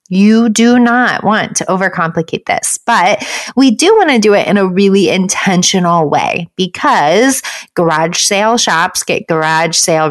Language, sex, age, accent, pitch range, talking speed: English, female, 30-49, American, 170-235 Hz, 155 wpm